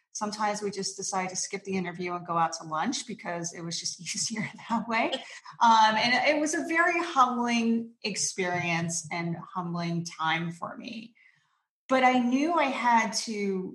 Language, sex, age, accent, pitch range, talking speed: English, female, 30-49, American, 180-230 Hz, 170 wpm